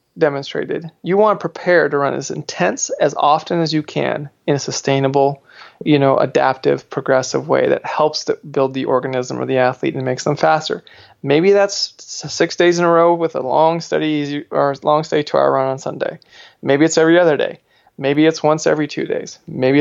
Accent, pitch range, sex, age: American, 140-170 Hz, male, 20-39